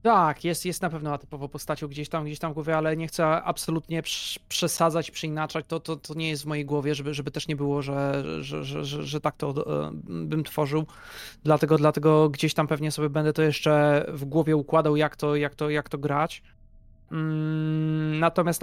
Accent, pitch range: native, 150-170 Hz